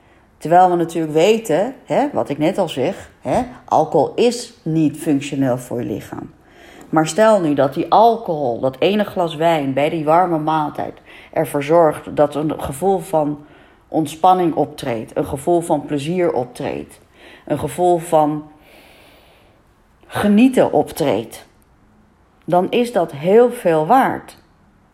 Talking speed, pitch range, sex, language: 130 wpm, 150-200 Hz, female, Dutch